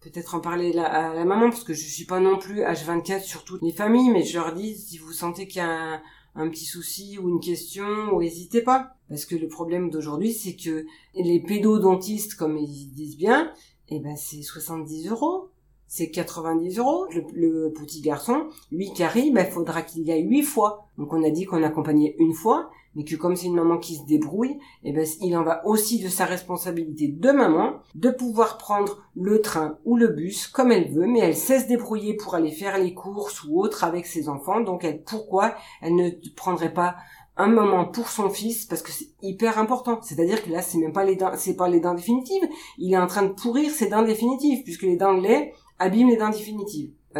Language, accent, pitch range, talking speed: French, French, 165-210 Hz, 230 wpm